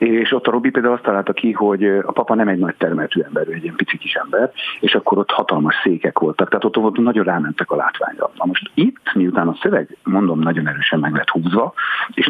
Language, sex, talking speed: Hungarian, male, 230 wpm